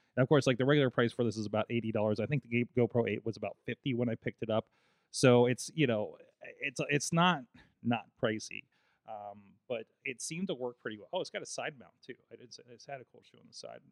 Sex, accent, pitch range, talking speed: male, American, 115-150 Hz, 250 wpm